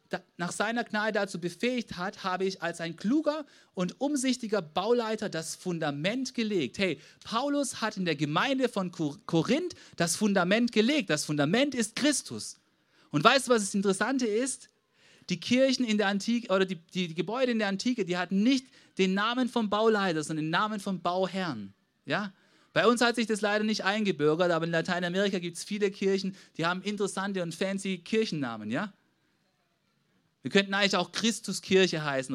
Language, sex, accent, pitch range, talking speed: German, male, German, 175-230 Hz, 175 wpm